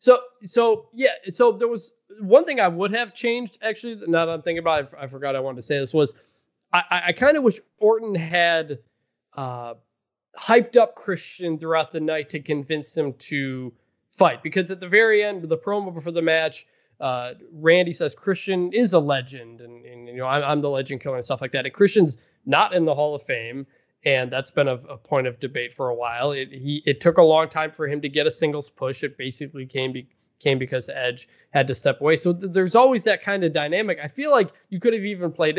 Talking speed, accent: 230 wpm, American